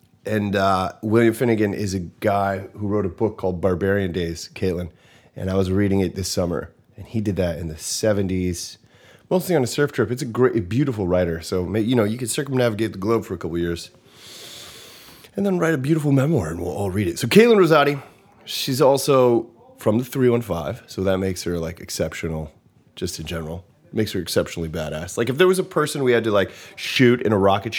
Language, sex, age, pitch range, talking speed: English, male, 30-49, 95-150 Hz, 215 wpm